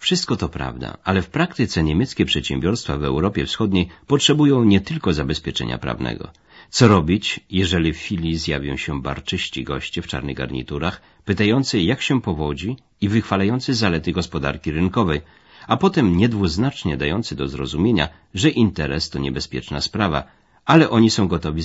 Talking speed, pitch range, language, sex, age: 145 wpm, 75-110 Hz, Polish, male, 50-69